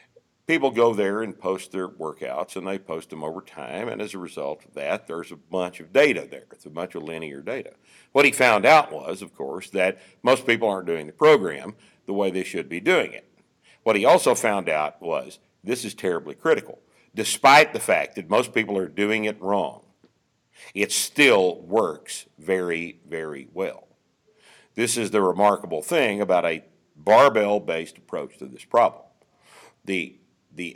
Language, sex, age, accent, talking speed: English, male, 60-79, American, 180 wpm